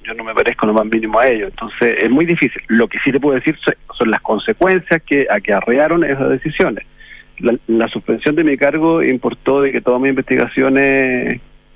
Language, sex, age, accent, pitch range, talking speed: Spanish, male, 40-59, Argentinian, 110-145 Hz, 210 wpm